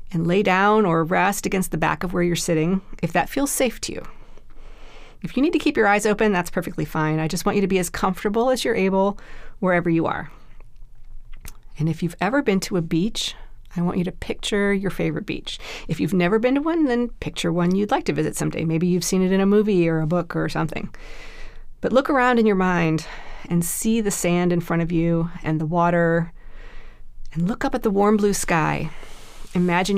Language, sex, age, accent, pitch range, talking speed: English, female, 40-59, American, 165-210 Hz, 220 wpm